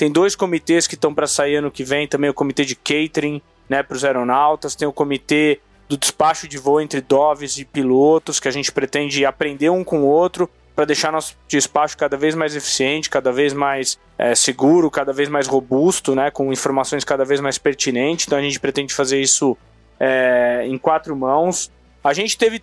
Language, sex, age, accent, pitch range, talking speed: Portuguese, male, 20-39, Brazilian, 140-160 Hz, 195 wpm